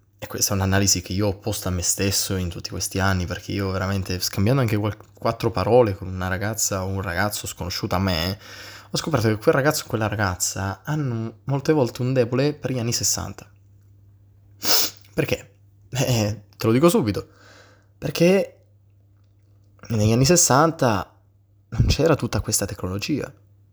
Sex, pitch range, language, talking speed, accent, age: male, 100-115 Hz, Italian, 160 wpm, native, 20-39